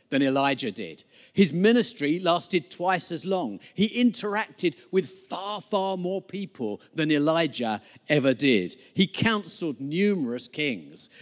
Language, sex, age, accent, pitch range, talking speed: English, male, 50-69, British, 140-195 Hz, 130 wpm